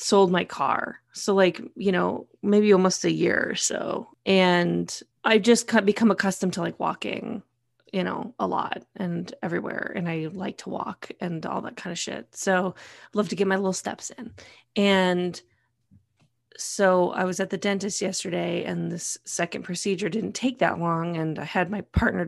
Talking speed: 185 wpm